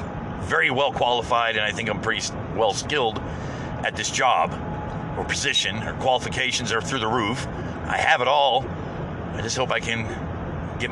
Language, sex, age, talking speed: English, male, 50-69, 170 wpm